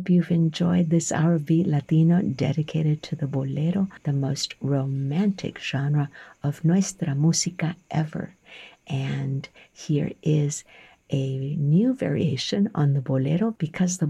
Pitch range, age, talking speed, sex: 145-180 Hz, 50-69, 130 wpm, female